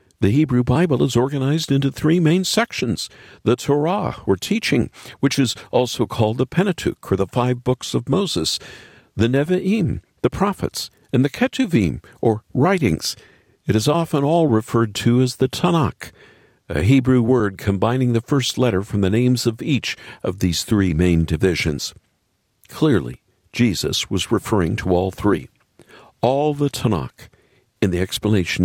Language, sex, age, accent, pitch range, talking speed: English, male, 50-69, American, 100-150 Hz, 155 wpm